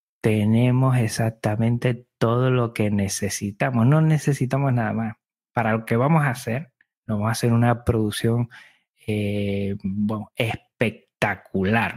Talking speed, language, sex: 120 wpm, Spanish, male